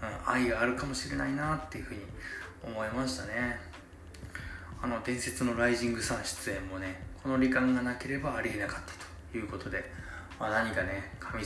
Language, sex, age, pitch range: Japanese, male, 20-39, 90-115 Hz